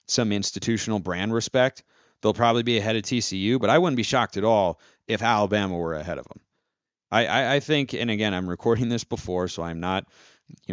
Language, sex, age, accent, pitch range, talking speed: English, male, 30-49, American, 95-125 Hz, 205 wpm